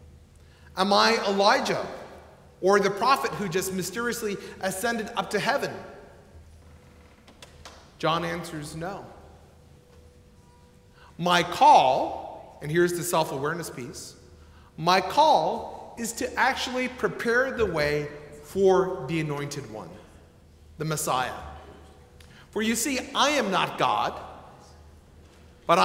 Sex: male